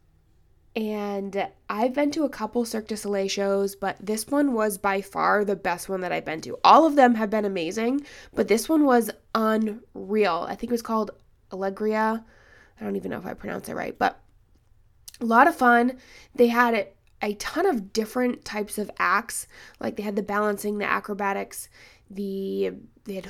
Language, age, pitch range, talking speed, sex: English, 20-39, 195-220 Hz, 190 wpm, female